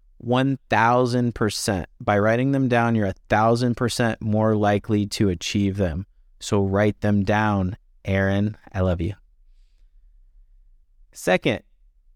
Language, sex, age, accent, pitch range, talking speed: English, male, 30-49, American, 100-125 Hz, 100 wpm